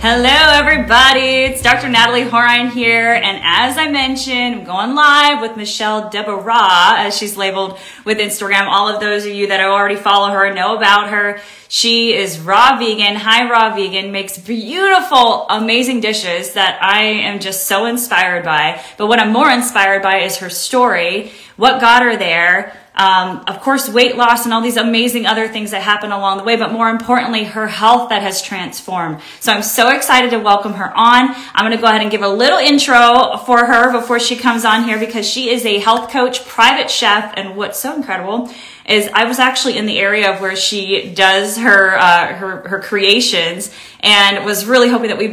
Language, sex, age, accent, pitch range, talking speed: English, female, 20-39, American, 195-240 Hz, 195 wpm